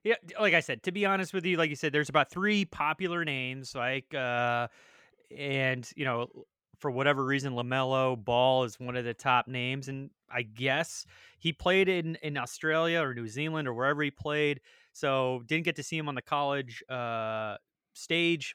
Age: 30-49